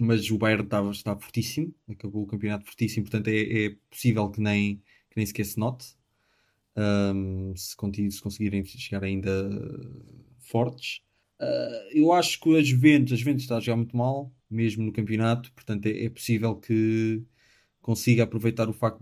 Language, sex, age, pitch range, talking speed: Portuguese, male, 20-39, 100-125 Hz, 160 wpm